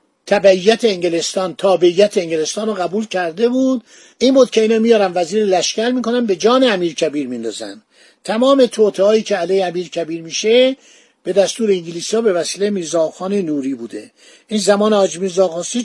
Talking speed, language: 155 wpm, Persian